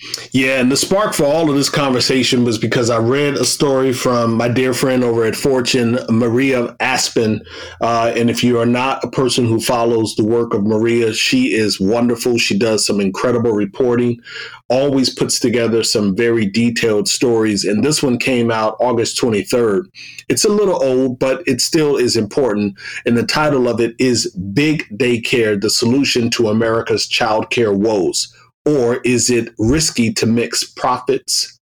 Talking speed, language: 175 wpm, English